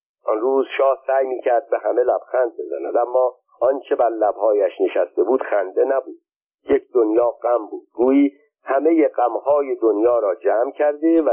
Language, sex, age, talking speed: Persian, male, 50-69, 160 wpm